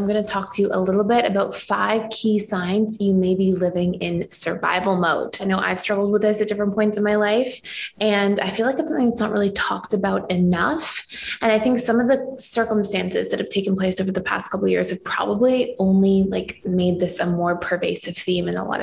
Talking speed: 235 wpm